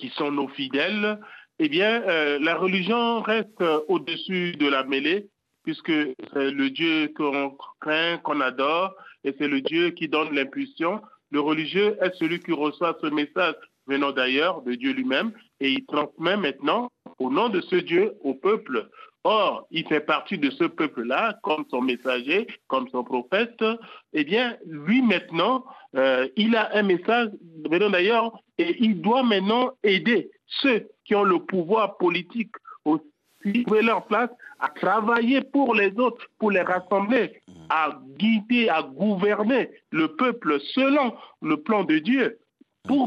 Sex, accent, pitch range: male, French, 160-245 Hz